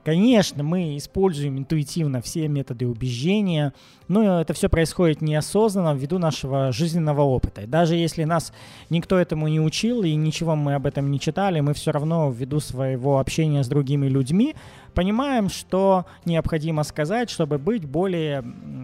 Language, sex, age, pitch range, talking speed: Russian, male, 20-39, 140-180 Hz, 145 wpm